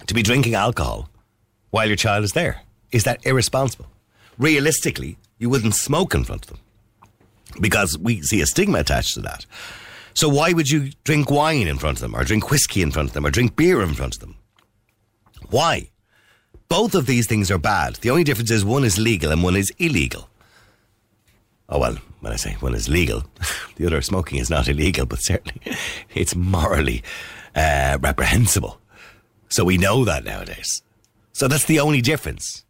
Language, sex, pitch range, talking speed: English, male, 85-130 Hz, 185 wpm